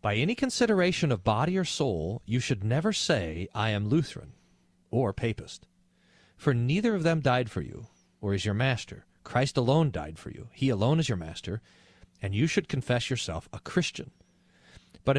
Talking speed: 180 wpm